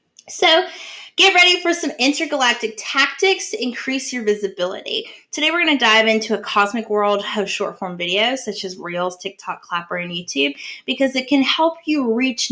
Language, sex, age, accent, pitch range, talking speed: English, female, 20-39, American, 195-275 Hz, 175 wpm